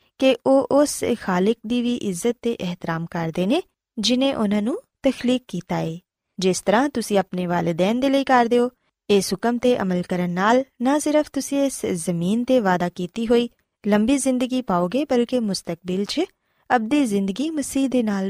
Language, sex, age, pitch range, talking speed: Punjabi, female, 20-39, 180-250 Hz, 165 wpm